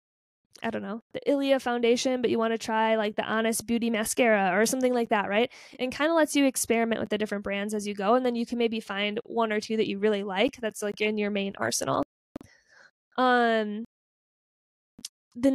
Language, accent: English, American